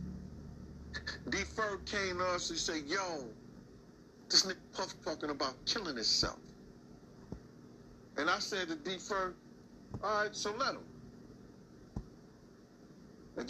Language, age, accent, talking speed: English, 50-69, American, 110 wpm